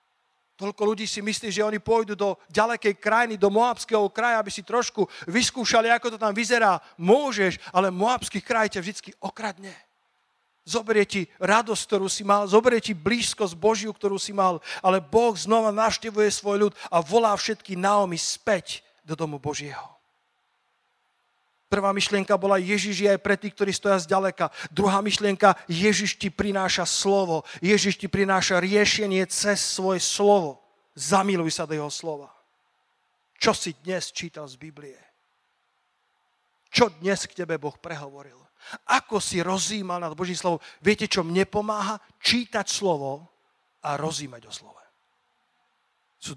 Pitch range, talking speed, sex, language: 180-210 Hz, 145 wpm, male, Slovak